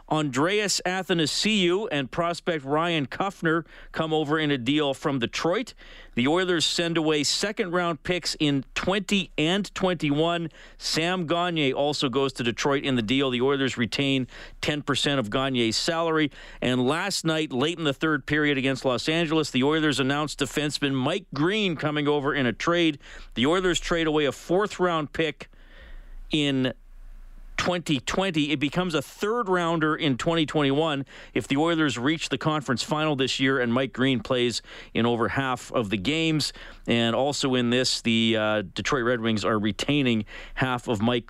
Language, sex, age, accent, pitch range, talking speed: English, male, 50-69, American, 125-160 Hz, 160 wpm